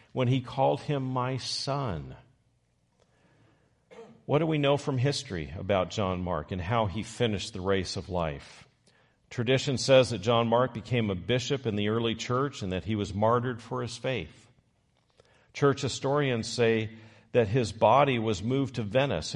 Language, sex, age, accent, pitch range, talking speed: English, male, 50-69, American, 105-130 Hz, 165 wpm